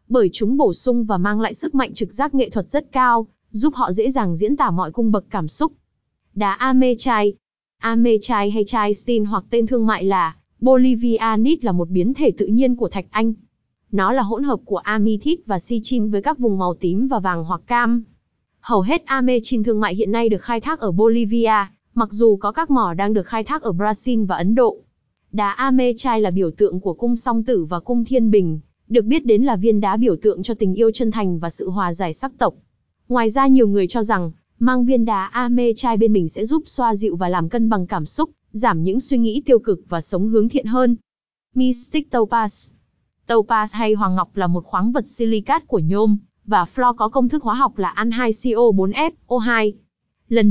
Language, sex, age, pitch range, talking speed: Vietnamese, female, 20-39, 205-245 Hz, 210 wpm